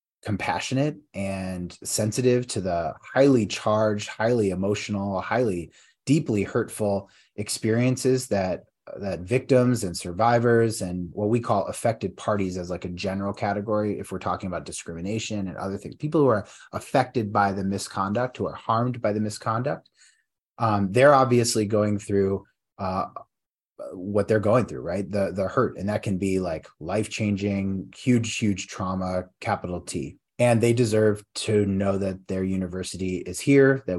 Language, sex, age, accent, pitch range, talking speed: English, male, 30-49, American, 95-115 Hz, 155 wpm